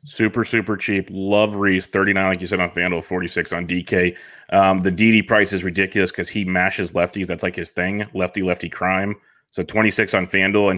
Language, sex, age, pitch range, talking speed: English, male, 30-49, 95-110 Hz, 195 wpm